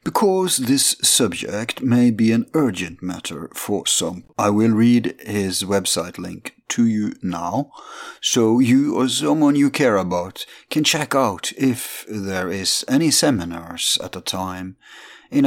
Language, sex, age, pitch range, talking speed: English, male, 50-69, 95-130 Hz, 145 wpm